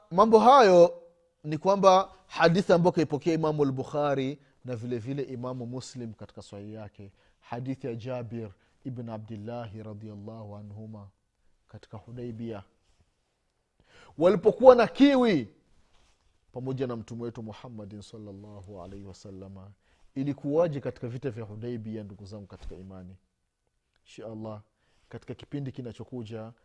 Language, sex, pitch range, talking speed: Swahili, male, 105-140 Hz, 115 wpm